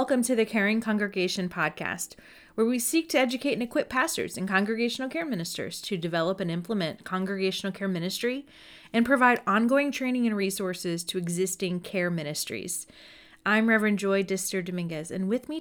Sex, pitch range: female, 180-225 Hz